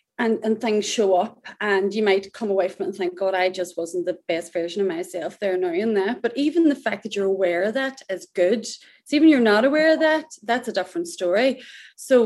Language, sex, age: English, female, 30-49